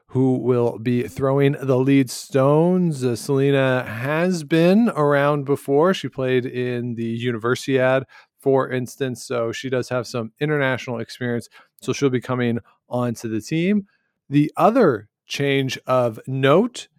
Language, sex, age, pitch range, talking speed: English, male, 40-59, 115-140 Hz, 140 wpm